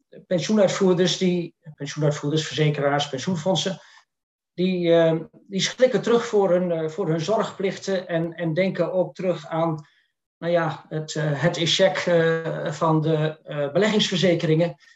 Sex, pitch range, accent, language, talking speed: male, 155-185 Hz, Dutch, Dutch, 130 wpm